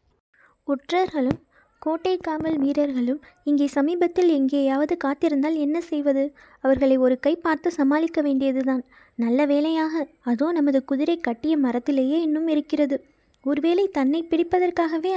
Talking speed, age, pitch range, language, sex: 110 wpm, 20-39, 270-315 Hz, Tamil, female